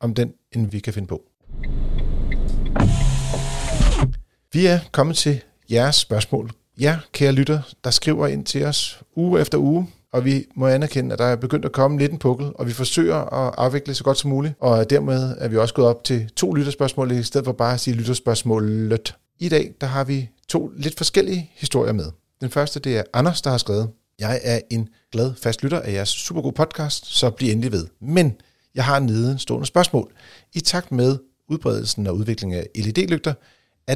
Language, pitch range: Danish, 110-140 Hz